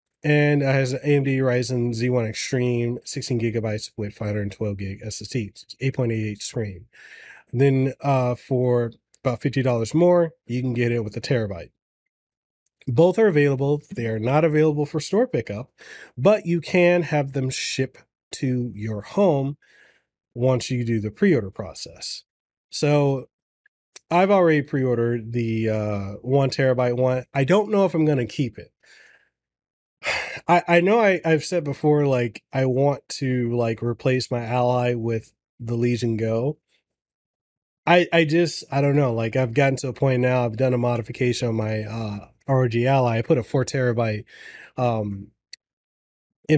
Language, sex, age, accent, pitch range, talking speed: English, male, 30-49, American, 120-150 Hz, 150 wpm